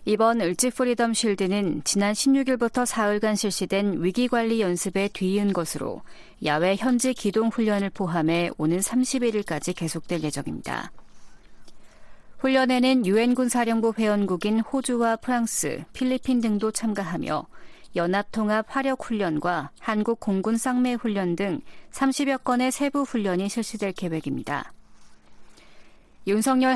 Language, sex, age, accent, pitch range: Korean, female, 40-59, native, 190-235 Hz